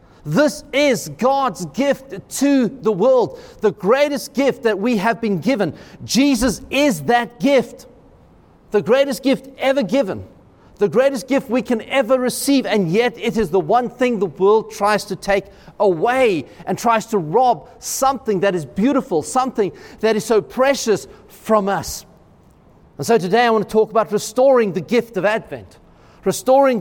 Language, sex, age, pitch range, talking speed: English, male, 40-59, 195-250 Hz, 165 wpm